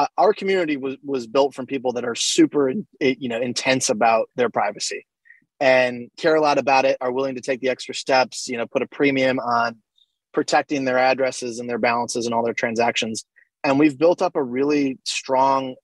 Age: 20-39